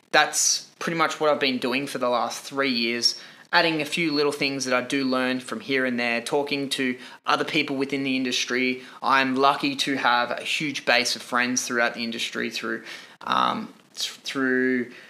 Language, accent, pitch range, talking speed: English, Australian, 130-150 Hz, 185 wpm